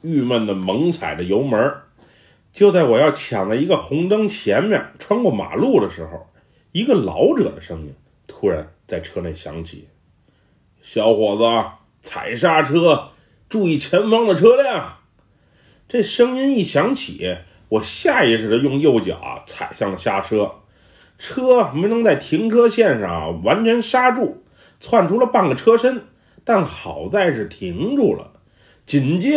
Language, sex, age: Chinese, male, 30-49